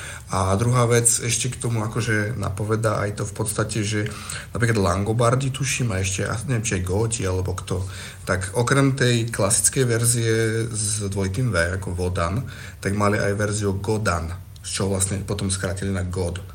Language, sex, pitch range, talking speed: Slovak, male, 95-110 Hz, 165 wpm